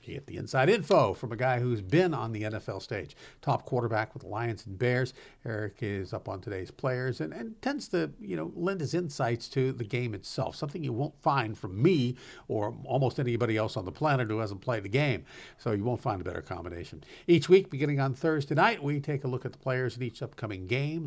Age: 50-69